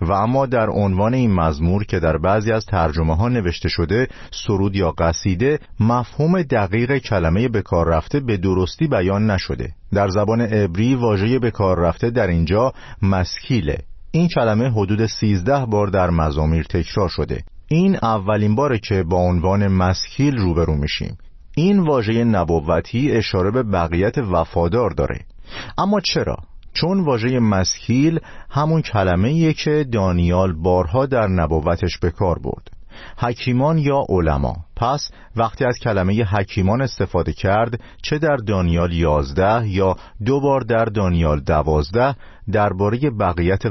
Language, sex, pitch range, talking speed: Persian, male, 85-120 Hz, 130 wpm